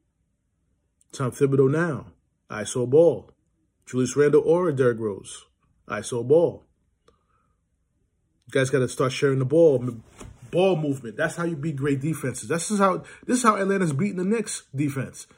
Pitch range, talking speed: 120-155 Hz, 150 wpm